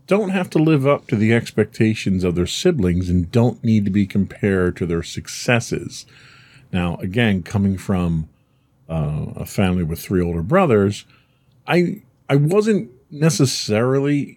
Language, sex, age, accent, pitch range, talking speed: English, male, 40-59, American, 95-130 Hz, 145 wpm